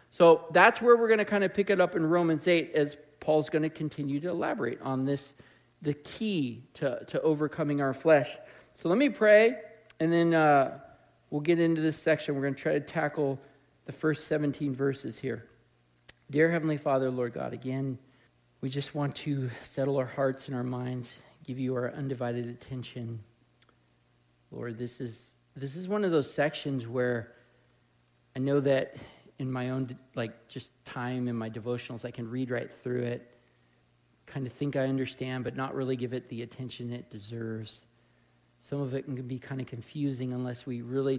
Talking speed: 180 wpm